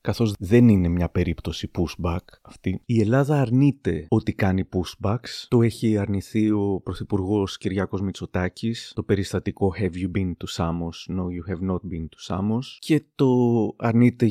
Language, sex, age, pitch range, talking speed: Greek, male, 30-49, 95-120 Hz, 155 wpm